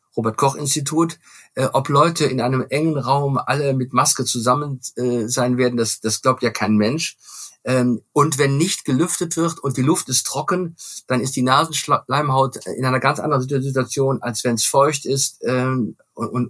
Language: German